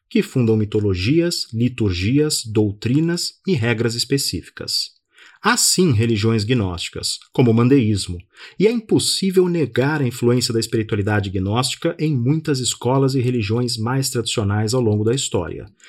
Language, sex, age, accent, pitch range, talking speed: Portuguese, male, 40-59, Brazilian, 110-155 Hz, 130 wpm